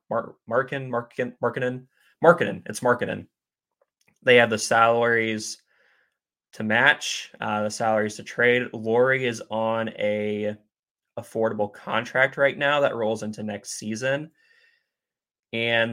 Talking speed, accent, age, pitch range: 120 wpm, American, 20-39, 105-125 Hz